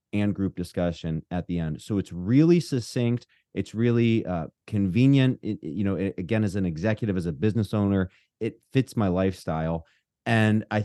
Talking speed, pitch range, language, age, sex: 165 wpm, 90-105 Hz, English, 30-49, male